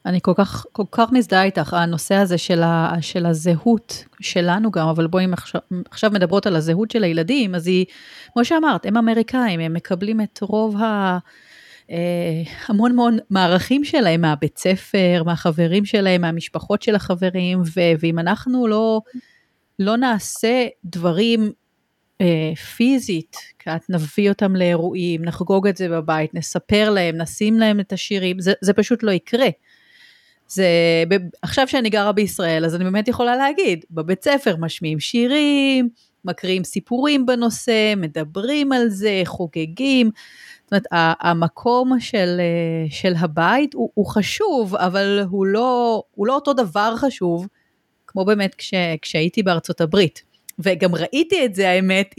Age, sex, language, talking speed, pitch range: 30-49, female, Hebrew, 135 wpm, 175-230 Hz